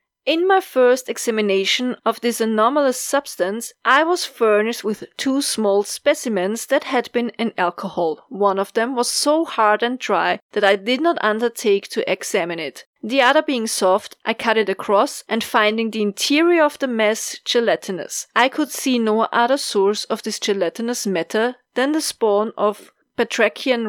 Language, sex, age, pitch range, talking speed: English, female, 30-49, 215-280 Hz, 170 wpm